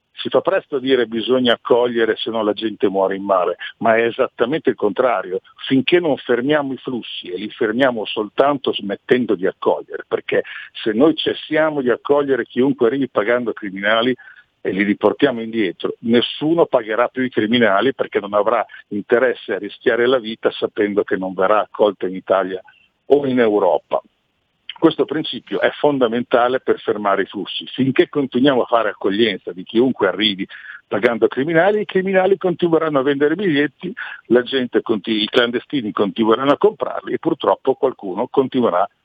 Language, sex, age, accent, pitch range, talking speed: Italian, male, 50-69, native, 110-145 Hz, 155 wpm